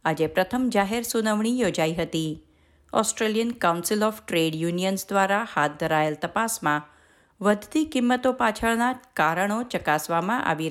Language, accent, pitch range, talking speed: Gujarati, native, 165-235 Hz, 120 wpm